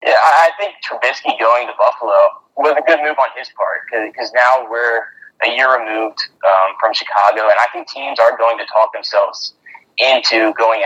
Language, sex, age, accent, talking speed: English, male, 20-39, American, 190 wpm